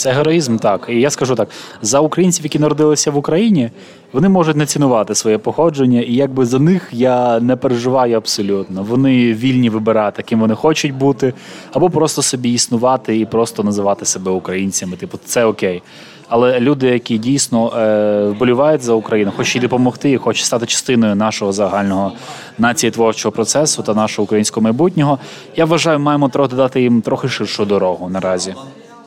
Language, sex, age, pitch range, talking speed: Ukrainian, male, 20-39, 105-135 Hz, 160 wpm